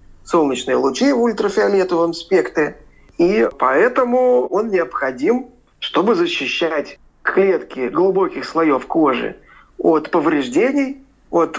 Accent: native